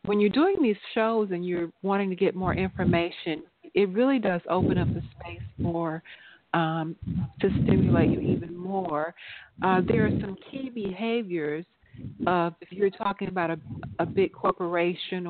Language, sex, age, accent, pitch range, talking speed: English, female, 40-59, American, 170-200 Hz, 155 wpm